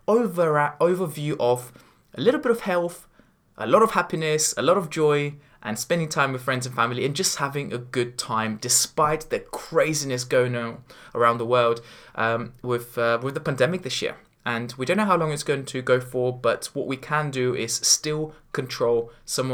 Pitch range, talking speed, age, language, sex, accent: 125-160 Hz, 195 wpm, 20-39, English, male, British